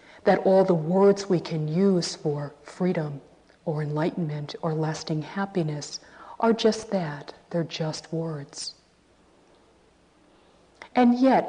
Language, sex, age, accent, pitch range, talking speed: English, female, 50-69, American, 155-200 Hz, 115 wpm